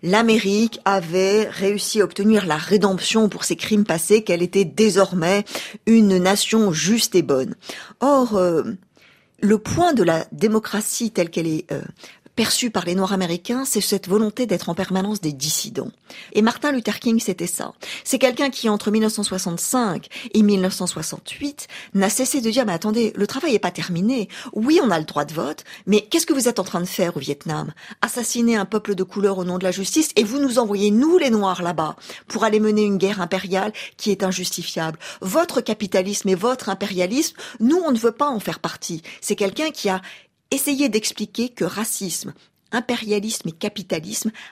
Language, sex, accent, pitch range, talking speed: French, female, French, 190-235 Hz, 185 wpm